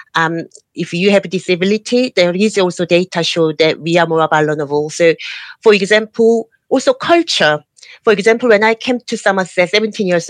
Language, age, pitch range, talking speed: English, 40-59, 165-225 Hz, 175 wpm